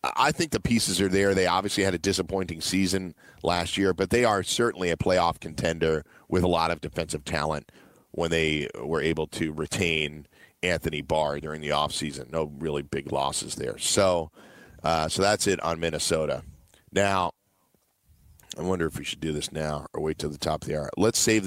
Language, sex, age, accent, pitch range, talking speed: English, male, 40-59, American, 80-95 Hz, 195 wpm